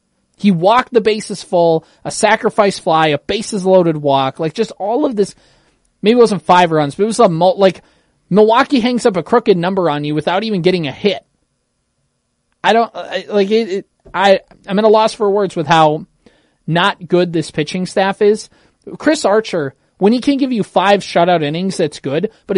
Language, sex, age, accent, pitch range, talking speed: English, male, 20-39, American, 160-210 Hz, 200 wpm